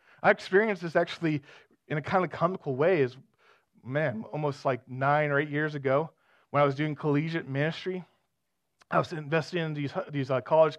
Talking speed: 180 wpm